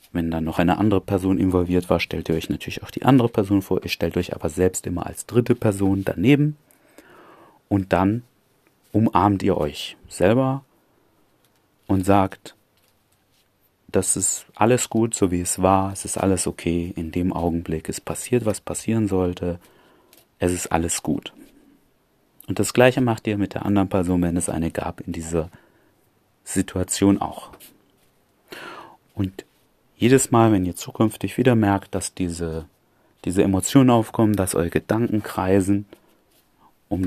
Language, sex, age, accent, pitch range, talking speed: German, male, 30-49, German, 90-115 Hz, 150 wpm